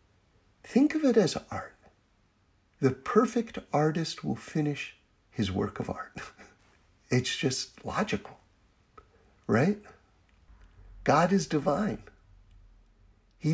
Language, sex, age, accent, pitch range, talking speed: English, male, 50-69, American, 100-170 Hz, 100 wpm